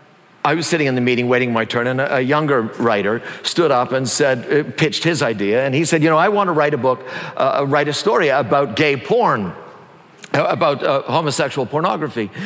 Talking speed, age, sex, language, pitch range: 200 wpm, 50-69, male, English, 155-220 Hz